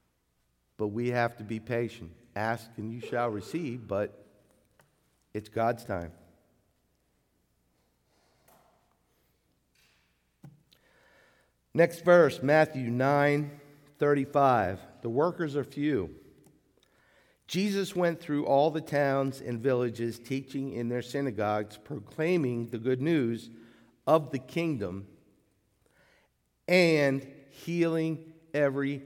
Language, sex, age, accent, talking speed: English, male, 50-69, American, 95 wpm